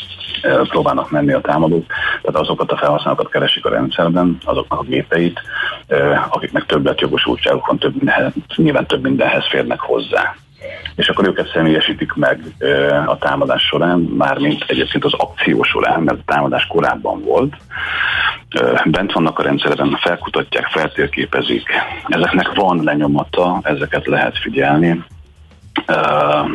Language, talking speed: Hungarian, 120 wpm